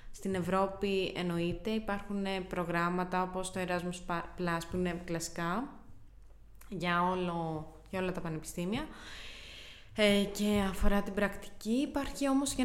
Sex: female